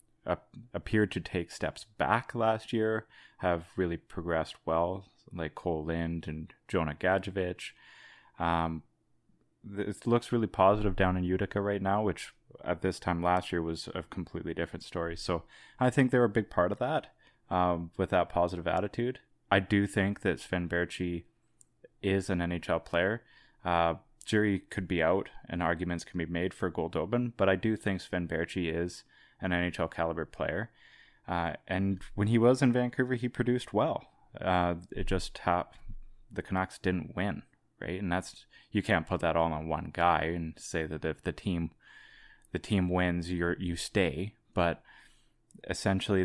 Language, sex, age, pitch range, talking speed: English, male, 20-39, 85-100 Hz, 165 wpm